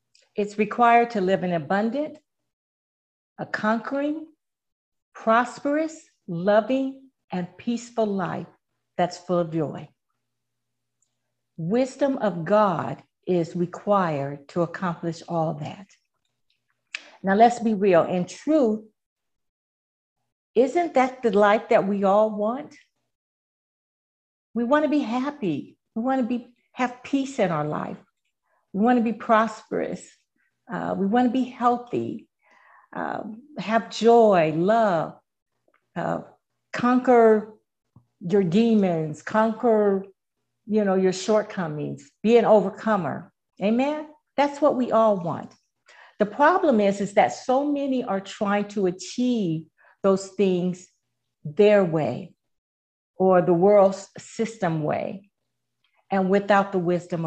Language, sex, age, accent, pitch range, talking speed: English, female, 50-69, American, 175-235 Hz, 115 wpm